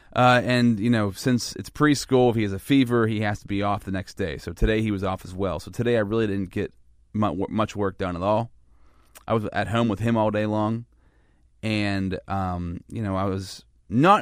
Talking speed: 230 wpm